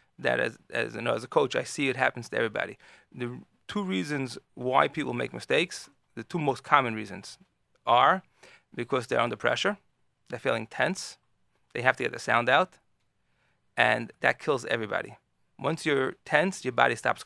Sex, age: male, 30-49